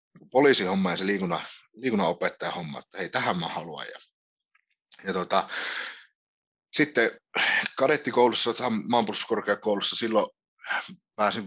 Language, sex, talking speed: Finnish, male, 95 wpm